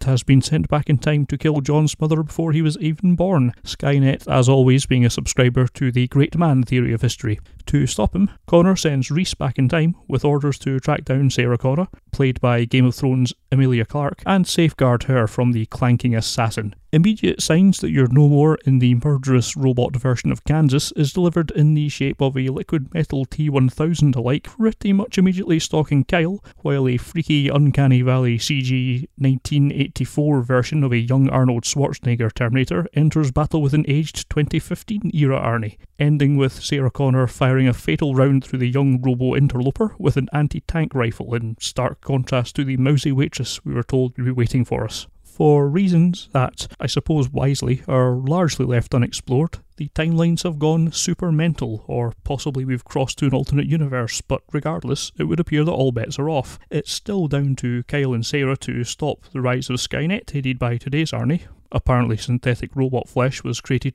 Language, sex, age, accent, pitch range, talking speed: English, male, 30-49, British, 125-150 Hz, 185 wpm